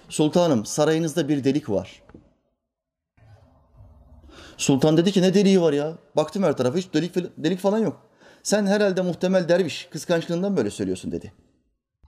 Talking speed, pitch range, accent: 140 wpm, 115-170 Hz, native